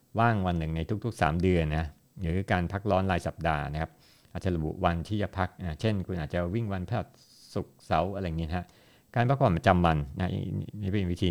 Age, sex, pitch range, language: 60-79, male, 80-100 Hz, Thai